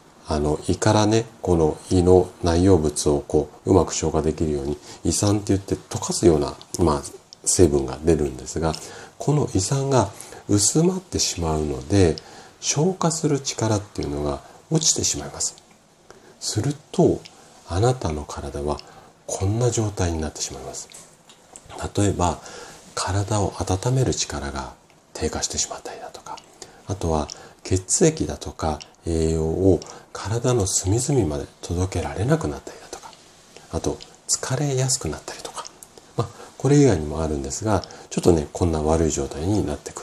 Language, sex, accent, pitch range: Japanese, male, native, 80-115 Hz